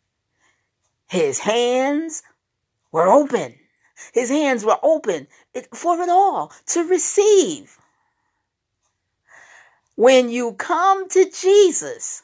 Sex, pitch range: female, 265-385 Hz